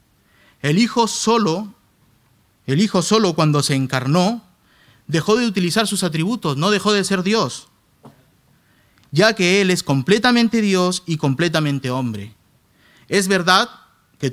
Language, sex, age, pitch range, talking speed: Spanish, male, 30-49, 130-185 Hz, 130 wpm